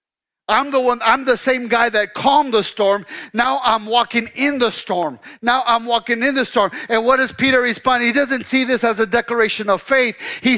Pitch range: 205-255 Hz